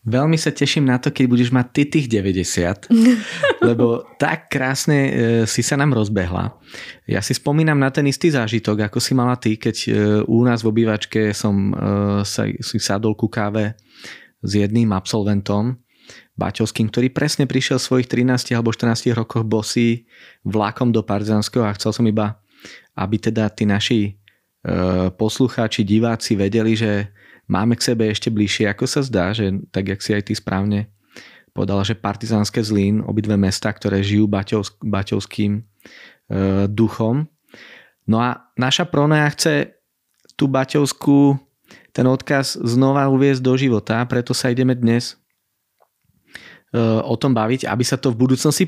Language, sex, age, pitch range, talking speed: Slovak, male, 20-39, 105-130 Hz, 155 wpm